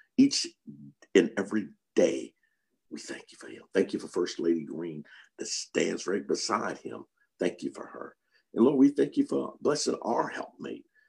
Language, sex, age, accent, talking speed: English, male, 50-69, American, 180 wpm